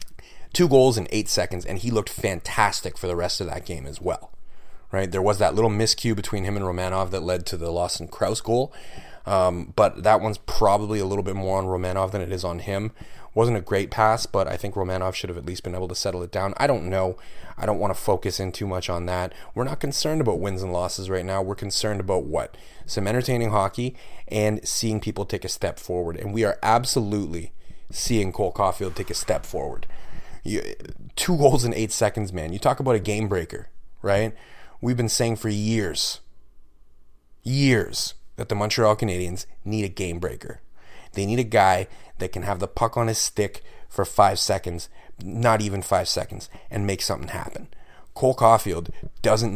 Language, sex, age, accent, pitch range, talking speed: English, male, 30-49, American, 90-110 Hz, 205 wpm